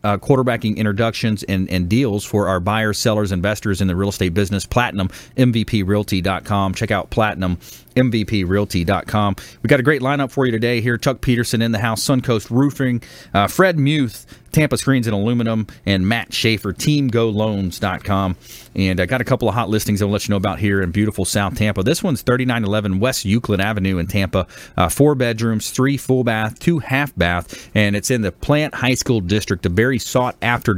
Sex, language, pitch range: male, English, 100-125 Hz